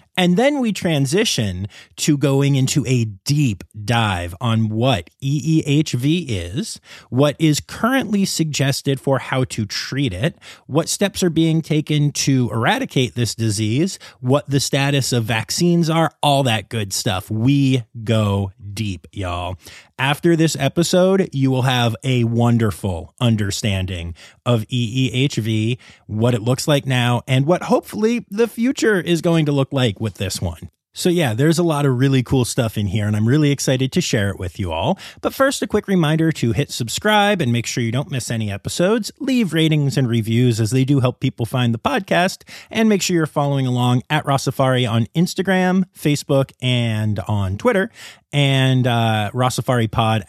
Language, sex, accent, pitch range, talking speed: English, male, American, 115-160 Hz, 170 wpm